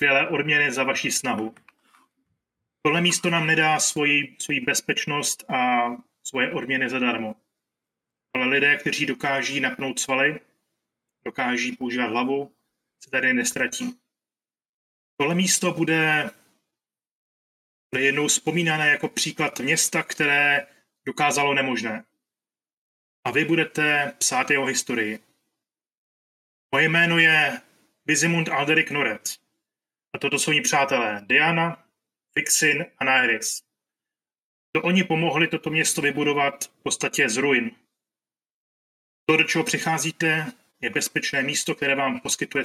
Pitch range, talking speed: 125-160 Hz, 115 wpm